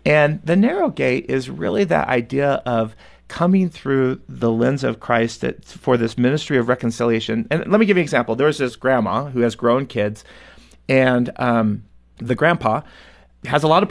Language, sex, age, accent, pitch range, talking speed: English, male, 40-59, American, 115-145 Hz, 185 wpm